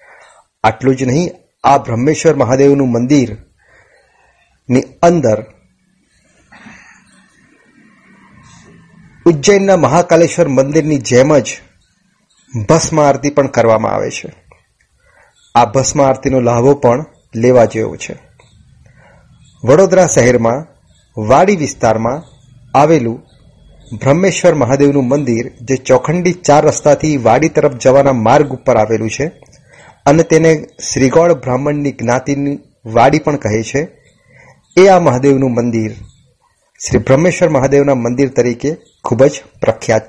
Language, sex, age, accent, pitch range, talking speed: Gujarati, male, 30-49, native, 125-160 Hz, 95 wpm